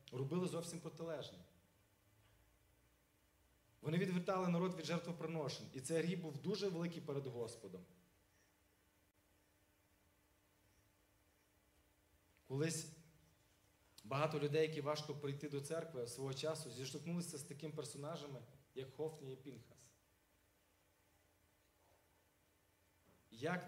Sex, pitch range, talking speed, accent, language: male, 115-155 Hz, 90 wpm, native, Ukrainian